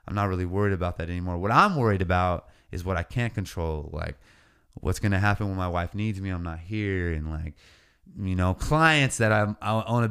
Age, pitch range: 20-39, 95-120 Hz